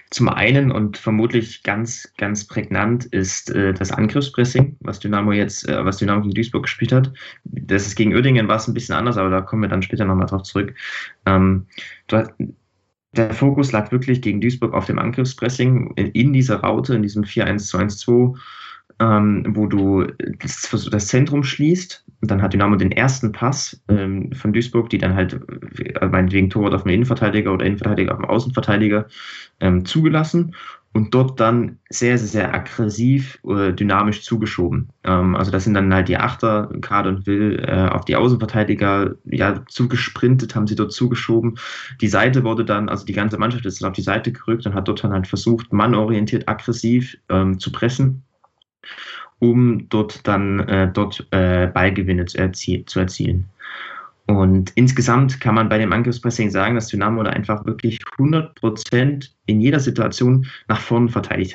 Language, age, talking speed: German, 20-39, 175 wpm